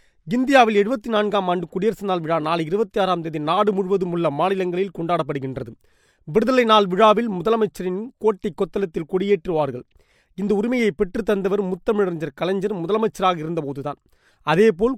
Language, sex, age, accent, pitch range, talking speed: Tamil, male, 30-49, native, 175-220 Hz, 125 wpm